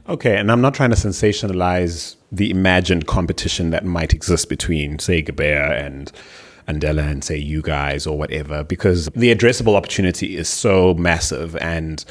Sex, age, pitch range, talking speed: male, 30-49, 85-105 Hz, 160 wpm